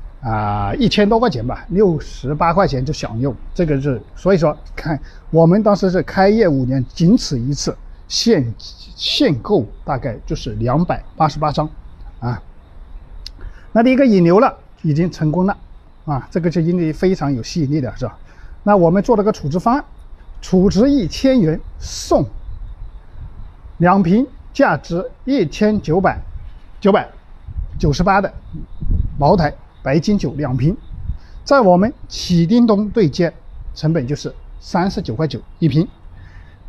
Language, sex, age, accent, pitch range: Chinese, male, 50-69, native, 120-195 Hz